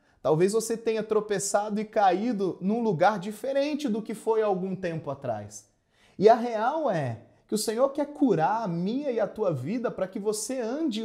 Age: 30-49